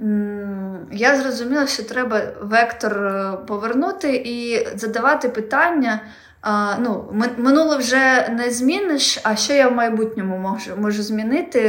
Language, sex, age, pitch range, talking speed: Ukrainian, female, 20-39, 190-230 Hz, 115 wpm